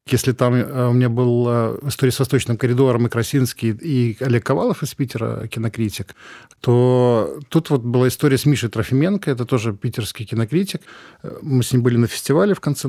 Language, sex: Russian, male